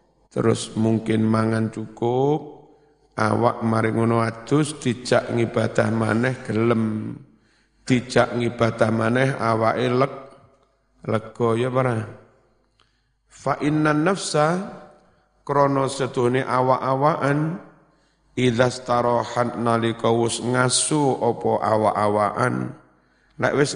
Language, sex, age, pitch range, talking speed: Indonesian, male, 50-69, 115-135 Hz, 80 wpm